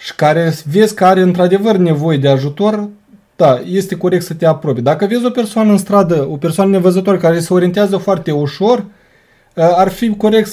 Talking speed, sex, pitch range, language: 180 wpm, male, 170-215 Hz, Romanian